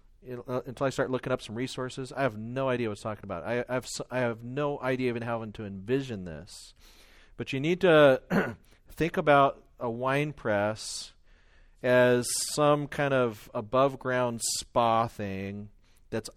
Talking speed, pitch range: 165 wpm, 110-135 Hz